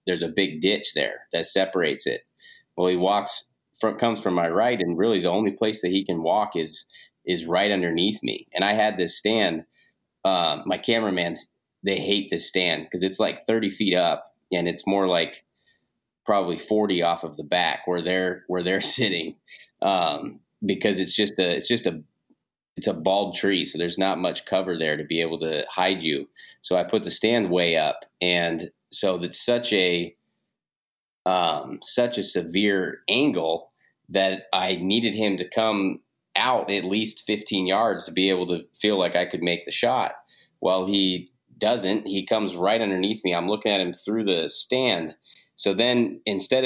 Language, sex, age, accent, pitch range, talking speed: English, male, 30-49, American, 90-105 Hz, 185 wpm